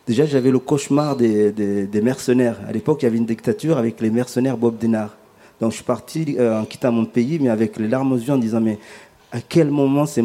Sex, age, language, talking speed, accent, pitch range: male, 40-59, French, 245 wpm, French, 115-145 Hz